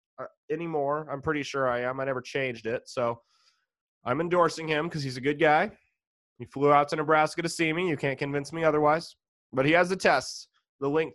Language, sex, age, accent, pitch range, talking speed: English, male, 20-39, American, 140-170 Hz, 210 wpm